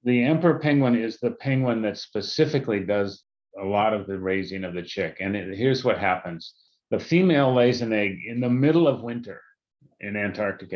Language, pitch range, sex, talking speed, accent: English, 105-145 Hz, male, 190 wpm, American